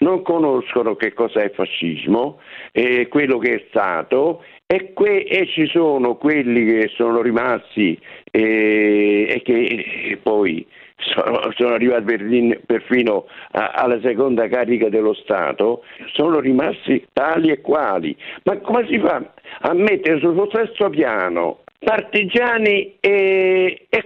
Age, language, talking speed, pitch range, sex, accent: 60-79, Italian, 135 wpm, 140-220 Hz, male, native